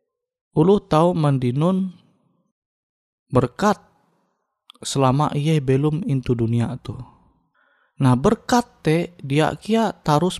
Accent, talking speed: native, 105 wpm